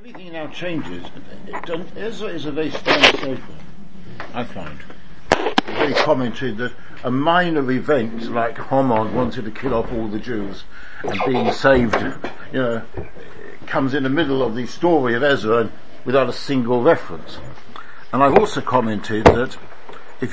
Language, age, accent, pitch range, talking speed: English, 60-79, British, 110-160 Hz, 145 wpm